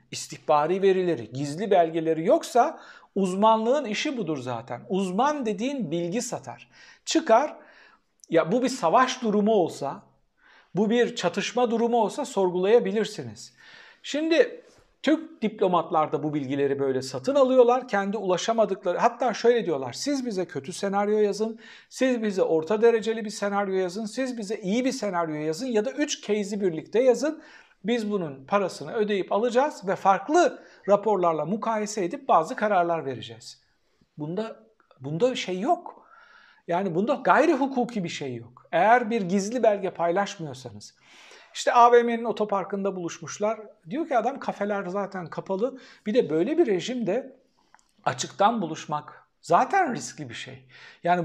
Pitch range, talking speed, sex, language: 170-245 Hz, 135 wpm, male, Turkish